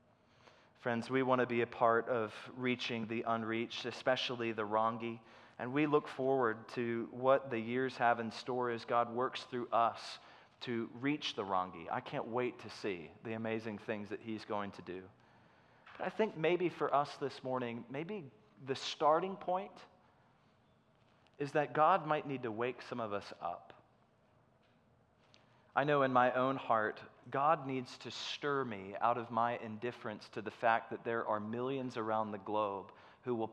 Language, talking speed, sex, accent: English, 170 wpm, male, American